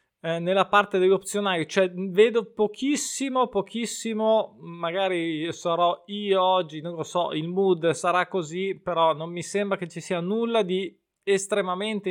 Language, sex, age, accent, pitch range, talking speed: Italian, male, 20-39, native, 165-200 Hz, 145 wpm